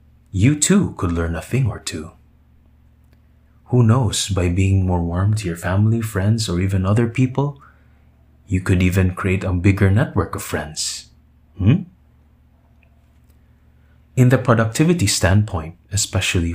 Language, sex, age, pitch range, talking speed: English, male, 20-39, 80-100 Hz, 135 wpm